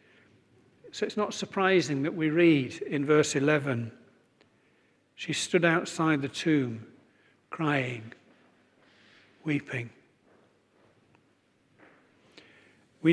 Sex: male